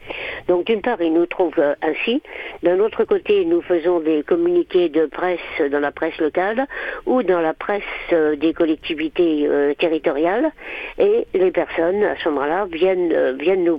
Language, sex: French, female